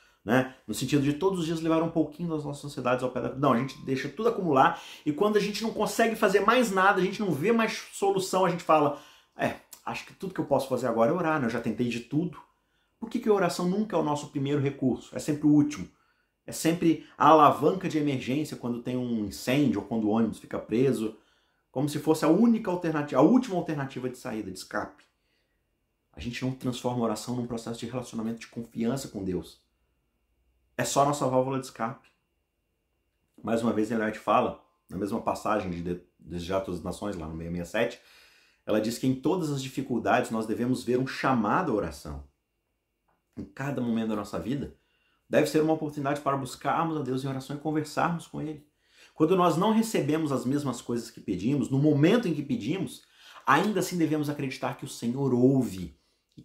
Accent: Brazilian